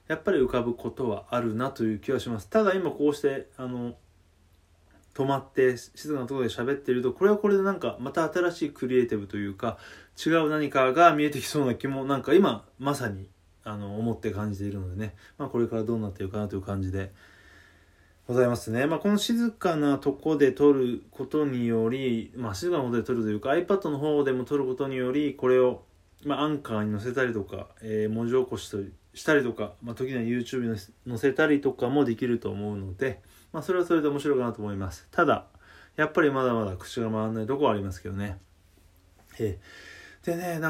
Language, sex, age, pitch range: Japanese, male, 20-39, 105-140 Hz